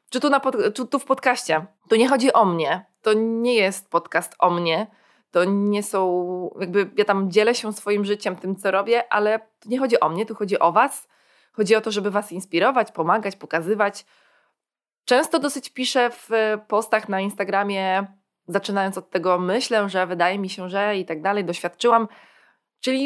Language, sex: Polish, female